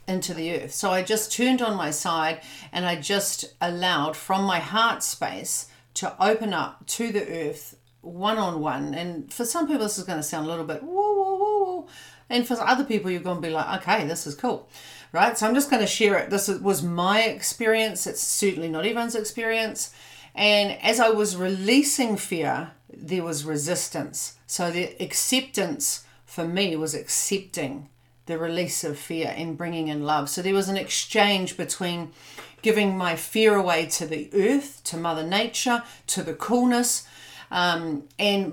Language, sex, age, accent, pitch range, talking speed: English, female, 40-59, Australian, 160-215 Hz, 180 wpm